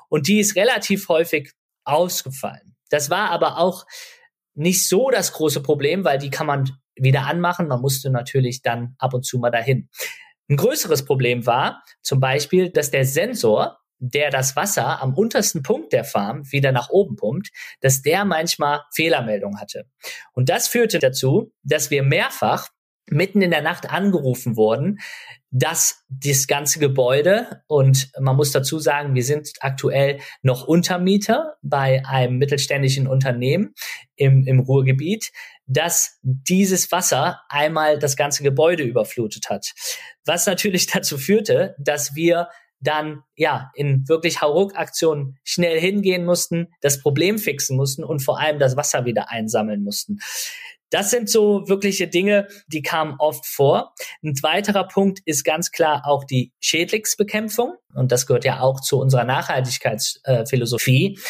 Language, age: German, 50-69